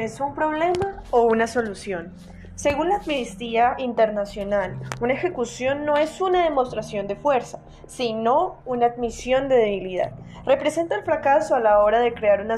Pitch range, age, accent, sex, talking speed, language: 215-265 Hz, 10-29, Colombian, female, 155 wpm, Spanish